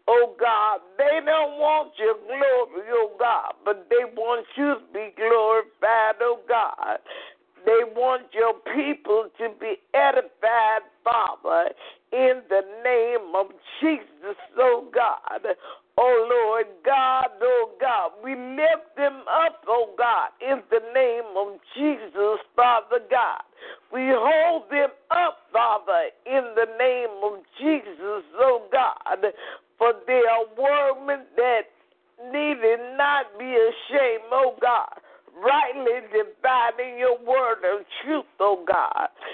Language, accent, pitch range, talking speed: English, American, 230-295 Hz, 130 wpm